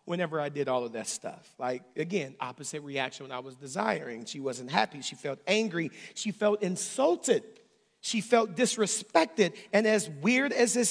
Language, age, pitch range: English, 40-59, 175-245 Hz